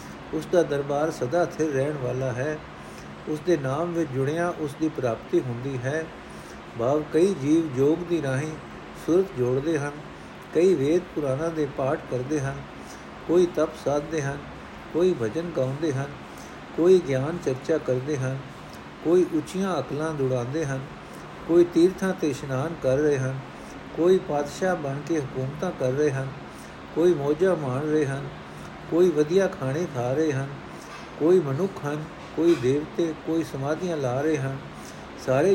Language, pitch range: Punjabi, 130-165 Hz